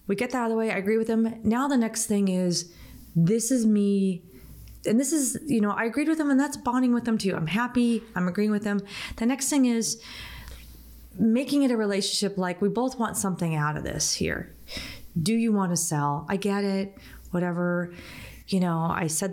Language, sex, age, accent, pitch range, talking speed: English, female, 30-49, American, 180-235 Hz, 215 wpm